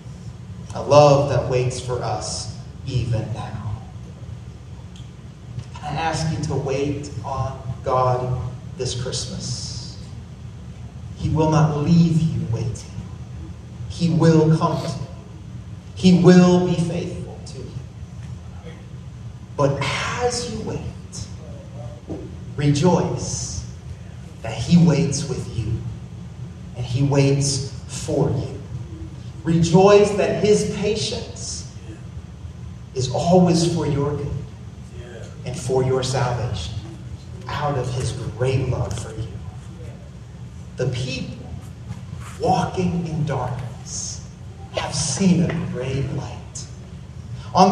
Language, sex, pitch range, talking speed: English, male, 120-165 Hz, 100 wpm